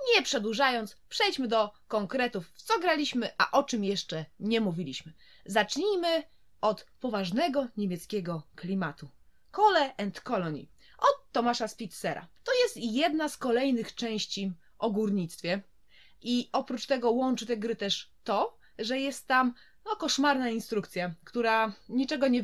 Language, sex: Polish, female